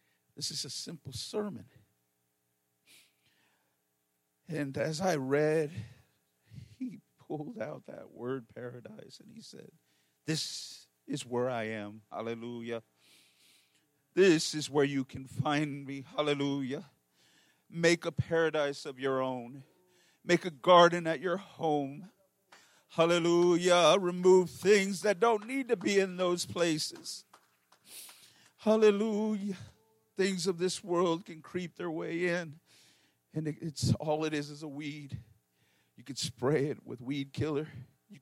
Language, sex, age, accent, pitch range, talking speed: English, male, 40-59, American, 120-165 Hz, 125 wpm